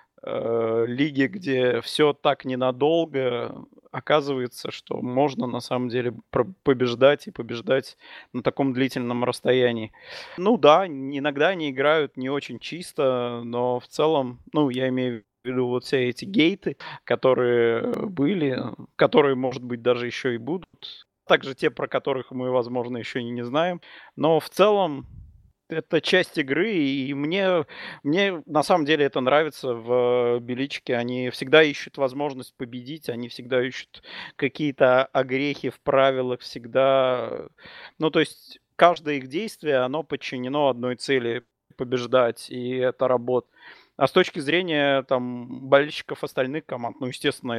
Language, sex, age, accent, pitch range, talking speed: Russian, male, 30-49, native, 125-145 Hz, 140 wpm